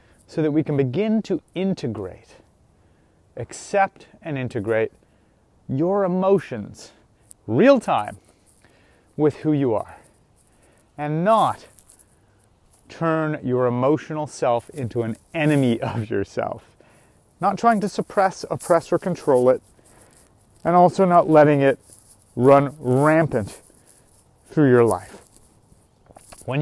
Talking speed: 110 wpm